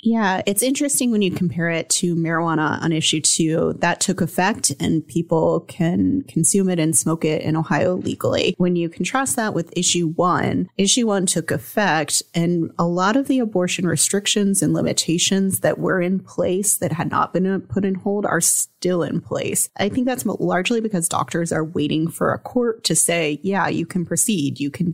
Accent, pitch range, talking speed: American, 160-195 Hz, 190 wpm